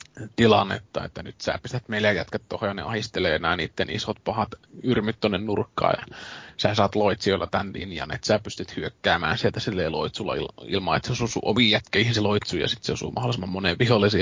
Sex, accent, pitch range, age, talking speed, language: male, native, 105-125 Hz, 20-39, 195 wpm, Finnish